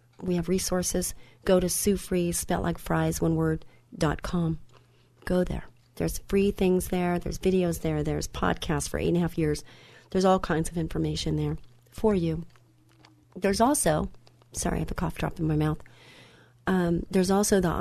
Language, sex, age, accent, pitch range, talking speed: English, female, 40-59, American, 140-190 Hz, 180 wpm